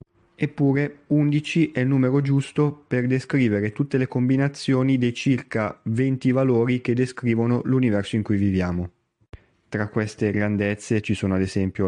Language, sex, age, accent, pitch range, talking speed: Italian, male, 20-39, native, 100-125 Hz, 140 wpm